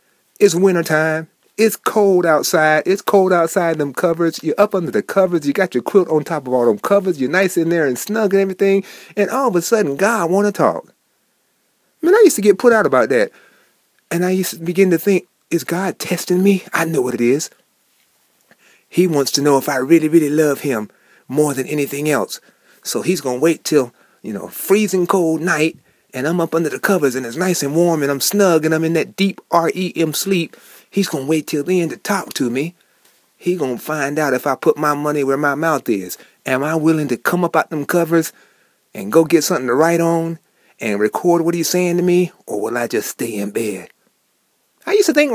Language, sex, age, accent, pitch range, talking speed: English, male, 30-49, American, 155-195 Hz, 230 wpm